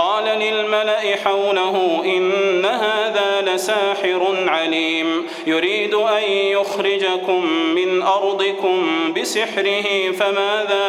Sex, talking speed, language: male, 75 wpm, Arabic